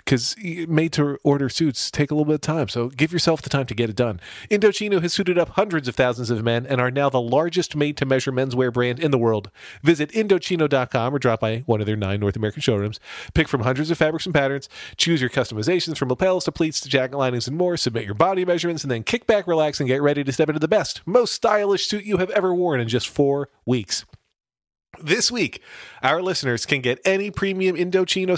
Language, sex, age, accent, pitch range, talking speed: English, male, 40-59, American, 120-170 Hz, 225 wpm